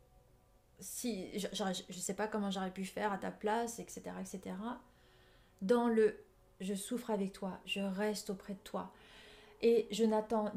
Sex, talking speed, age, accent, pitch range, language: female, 160 wpm, 30-49, French, 195-235 Hz, French